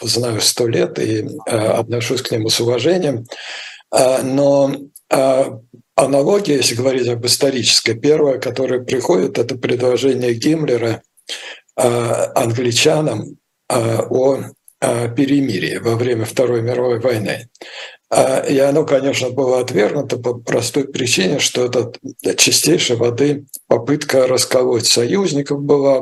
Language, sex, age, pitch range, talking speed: Russian, male, 60-79, 120-140 Hz, 105 wpm